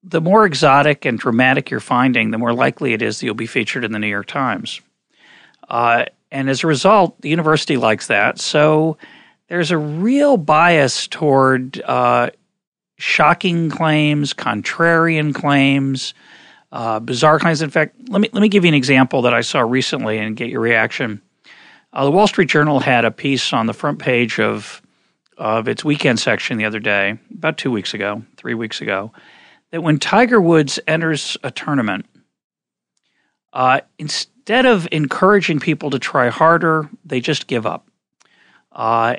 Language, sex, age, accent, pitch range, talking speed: English, male, 40-59, American, 130-175 Hz, 165 wpm